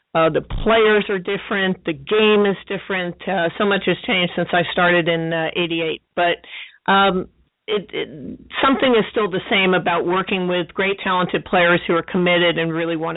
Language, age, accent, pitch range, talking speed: English, 50-69, American, 175-200 Hz, 185 wpm